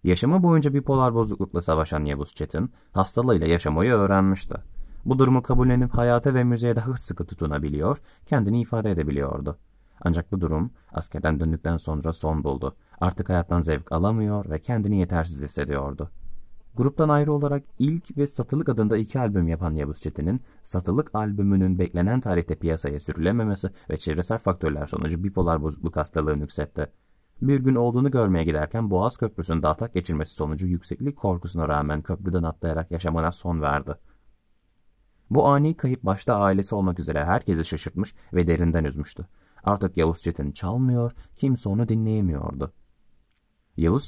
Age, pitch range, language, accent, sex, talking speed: 30-49, 80-110 Hz, Turkish, native, male, 140 wpm